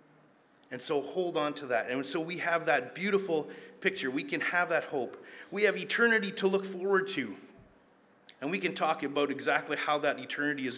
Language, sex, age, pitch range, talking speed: English, male, 30-49, 130-180 Hz, 195 wpm